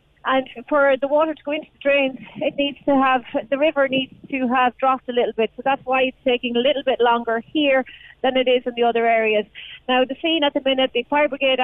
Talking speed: 245 wpm